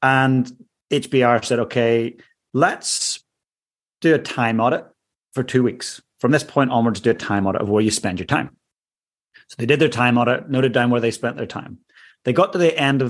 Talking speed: 205 wpm